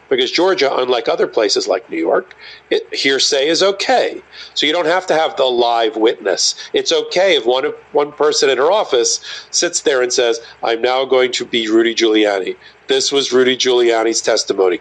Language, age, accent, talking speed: English, 50-69, American, 185 wpm